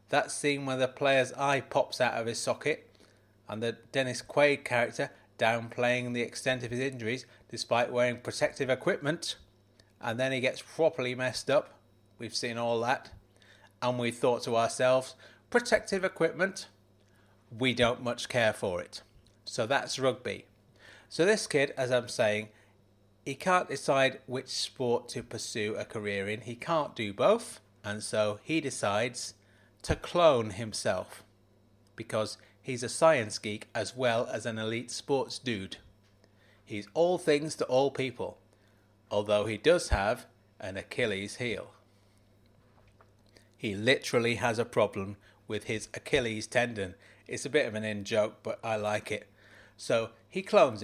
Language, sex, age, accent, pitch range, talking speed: English, male, 30-49, British, 105-130 Hz, 150 wpm